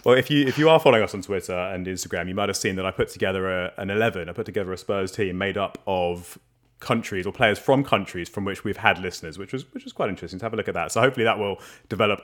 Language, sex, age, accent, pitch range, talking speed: English, male, 30-49, British, 95-115 Hz, 290 wpm